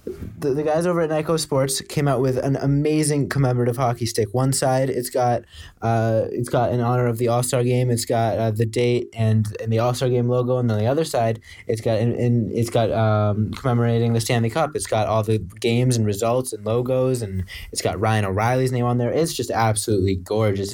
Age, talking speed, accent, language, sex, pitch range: 20-39, 225 wpm, American, English, male, 110-125 Hz